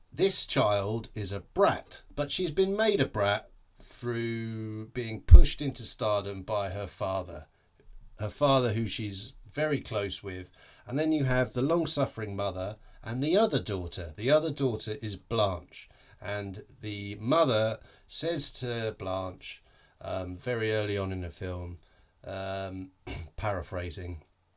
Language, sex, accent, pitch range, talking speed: English, male, British, 95-120 Hz, 140 wpm